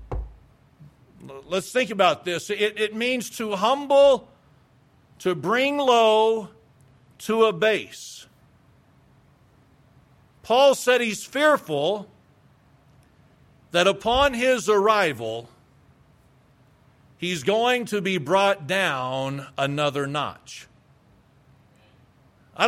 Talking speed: 80 wpm